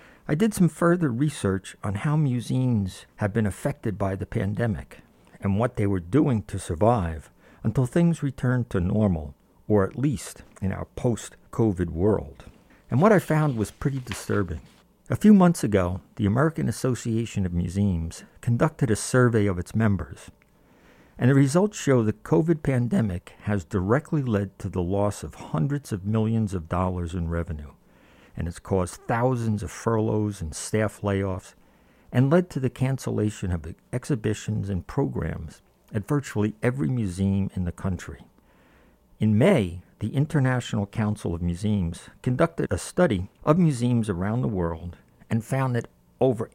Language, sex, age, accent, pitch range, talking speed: English, male, 50-69, American, 95-130 Hz, 155 wpm